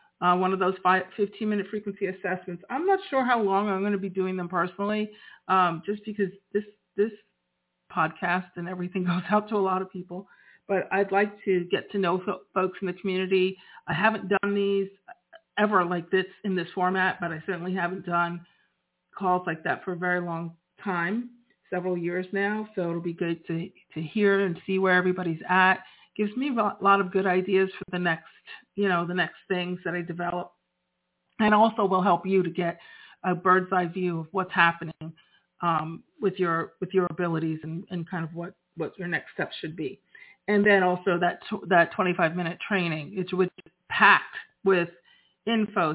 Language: English